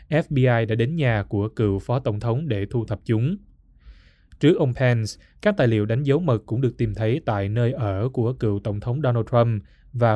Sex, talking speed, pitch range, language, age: male, 215 wpm, 105-130 Hz, Vietnamese, 20-39